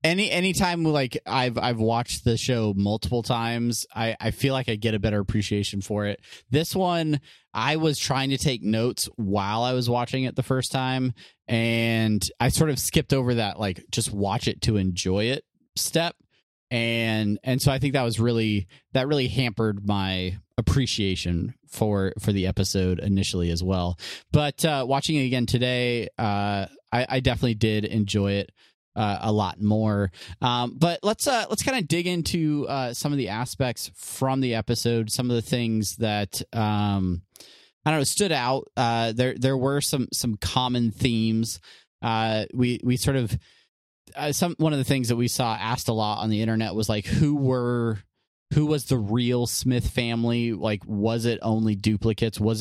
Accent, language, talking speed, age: American, English, 185 wpm, 30-49